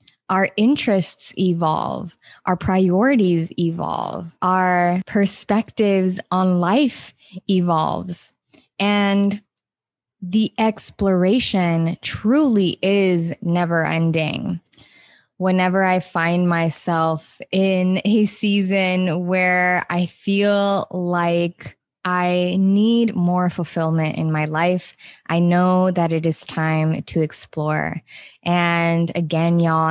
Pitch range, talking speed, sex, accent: 170-195 Hz, 95 wpm, female, American